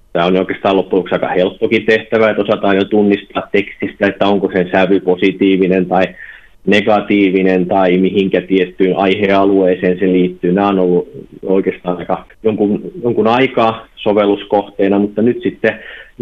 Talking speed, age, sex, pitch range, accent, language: 135 wpm, 30-49, male, 95-110 Hz, native, Finnish